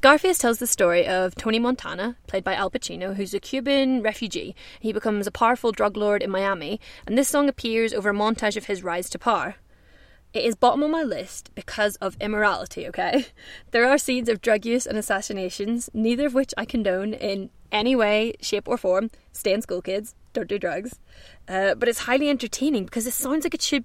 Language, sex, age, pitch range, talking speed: English, female, 20-39, 195-260 Hz, 205 wpm